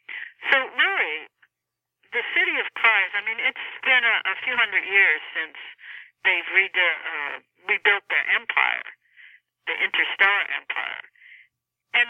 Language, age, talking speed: English, 60-79, 125 wpm